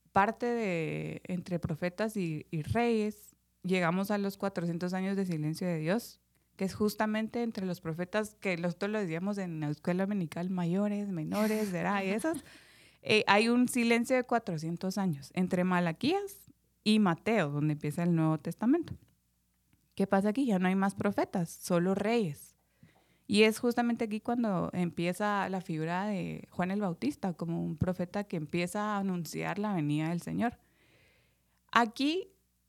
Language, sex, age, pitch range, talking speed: Spanish, female, 20-39, 170-215 Hz, 155 wpm